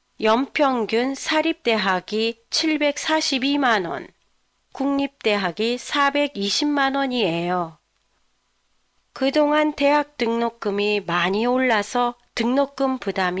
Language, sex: Japanese, female